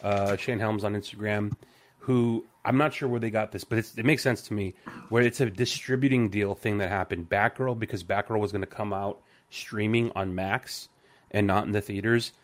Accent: American